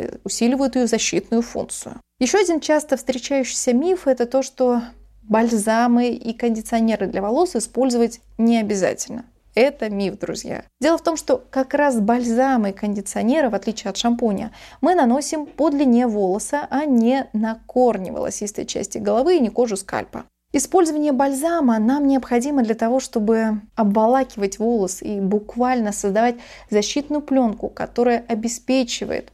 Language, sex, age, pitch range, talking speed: Russian, female, 20-39, 220-265 Hz, 140 wpm